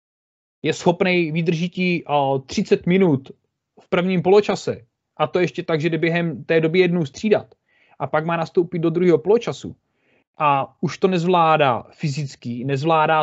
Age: 30-49